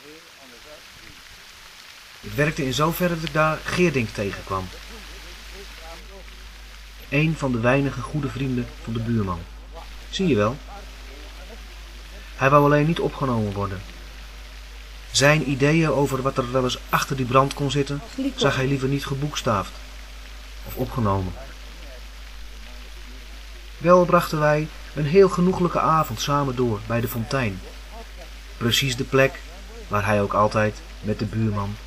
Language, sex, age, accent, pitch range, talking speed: English, male, 30-49, Dutch, 95-150 Hz, 130 wpm